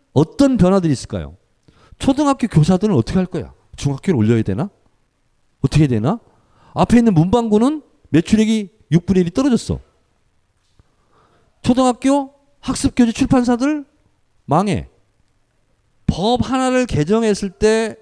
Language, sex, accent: Korean, male, native